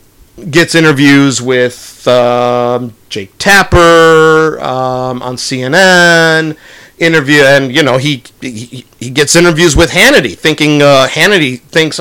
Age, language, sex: 50-69, English, male